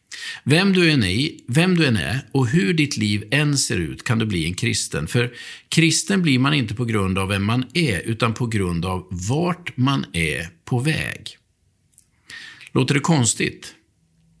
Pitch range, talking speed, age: 100-150 Hz, 180 wpm, 50-69